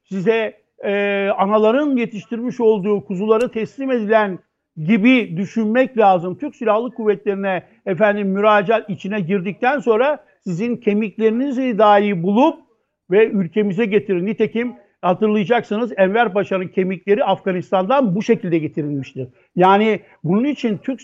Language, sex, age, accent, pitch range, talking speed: Turkish, male, 60-79, native, 195-245 Hz, 110 wpm